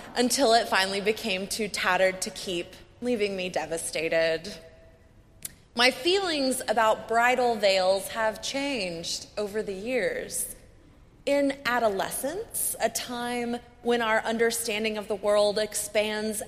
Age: 20-39